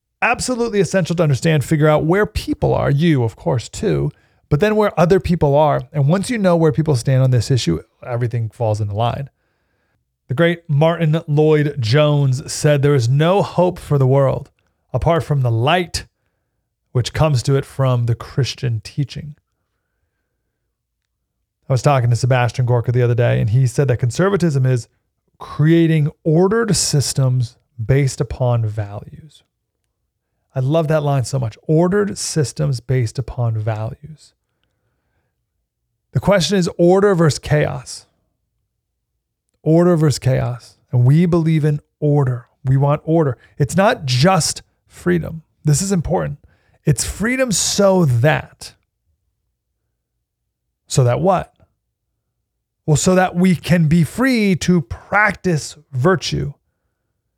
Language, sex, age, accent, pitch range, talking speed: English, male, 30-49, American, 120-165 Hz, 135 wpm